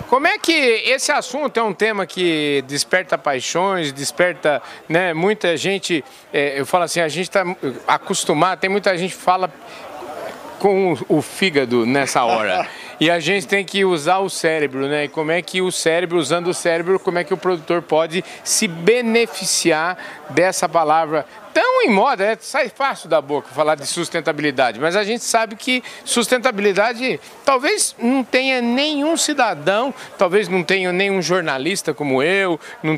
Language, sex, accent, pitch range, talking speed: Portuguese, male, Brazilian, 160-210 Hz, 165 wpm